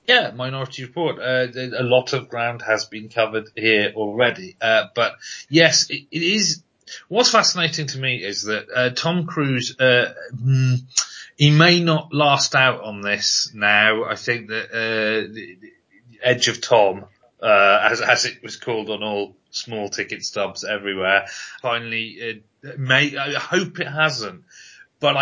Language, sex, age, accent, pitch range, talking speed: English, male, 30-49, British, 110-150 Hz, 155 wpm